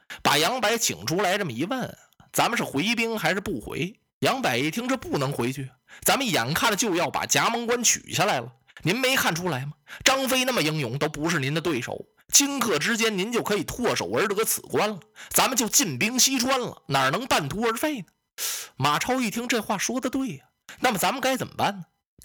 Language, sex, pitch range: Chinese, male, 150-245 Hz